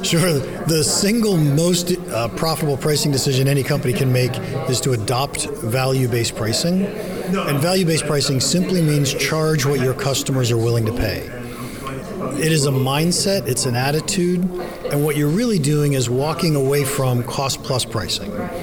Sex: male